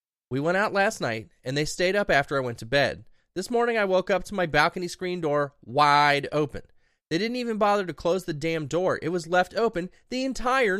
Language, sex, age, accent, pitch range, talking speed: English, male, 20-39, American, 130-195 Hz, 230 wpm